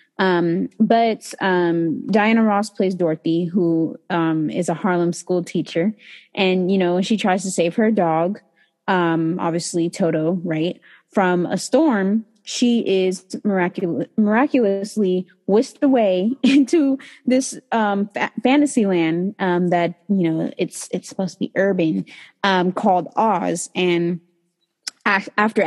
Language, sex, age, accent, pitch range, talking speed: English, female, 20-39, American, 175-220 Hz, 135 wpm